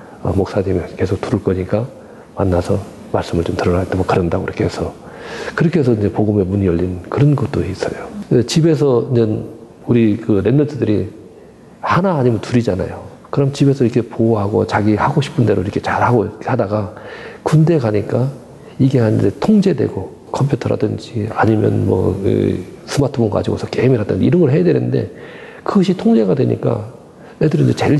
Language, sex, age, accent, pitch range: Korean, male, 40-59, native, 105-135 Hz